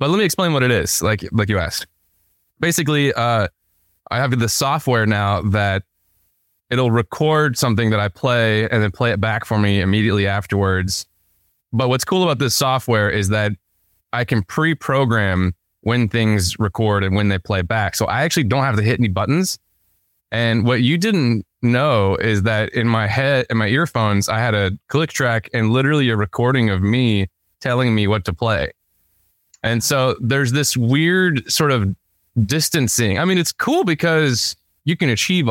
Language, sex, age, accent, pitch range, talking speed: English, male, 20-39, American, 100-125 Hz, 180 wpm